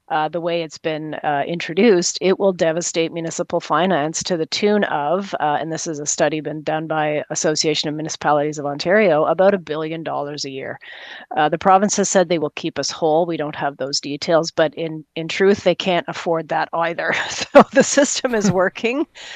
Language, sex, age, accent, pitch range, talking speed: English, female, 40-59, American, 150-170 Hz, 200 wpm